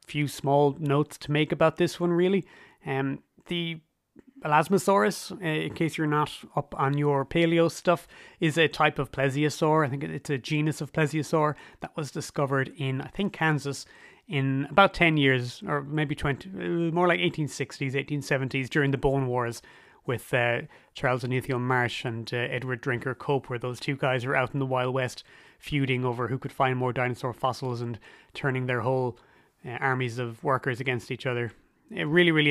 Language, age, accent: English, 30-49, Irish